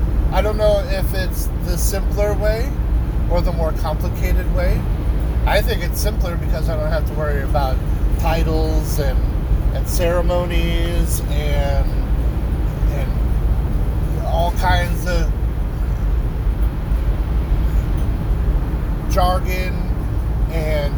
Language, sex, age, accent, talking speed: English, male, 30-49, American, 100 wpm